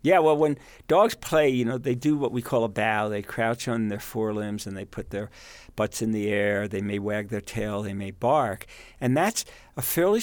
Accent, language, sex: American, English, male